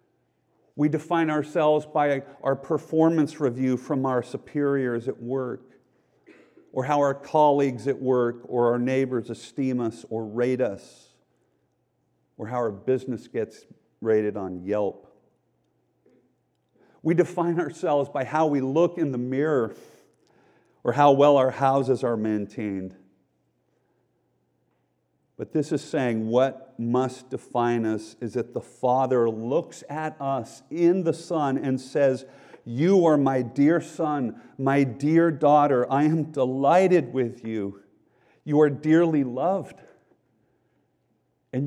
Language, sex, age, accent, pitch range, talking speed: English, male, 50-69, American, 125-155 Hz, 130 wpm